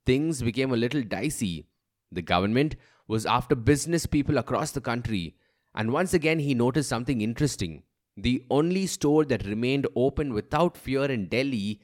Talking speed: 155 wpm